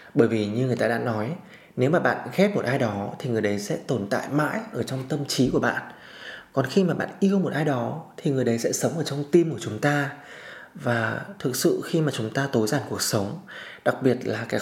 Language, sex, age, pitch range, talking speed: Vietnamese, male, 20-39, 125-170 Hz, 250 wpm